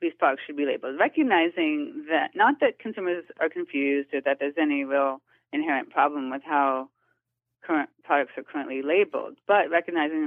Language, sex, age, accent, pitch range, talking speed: English, female, 30-49, American, 140-175 Hz, 165 wpm